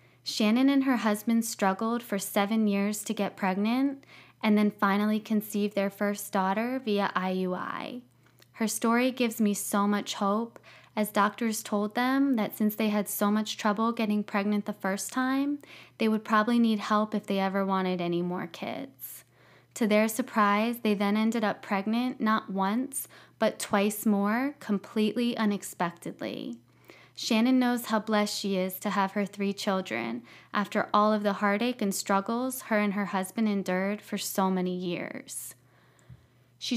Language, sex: English, female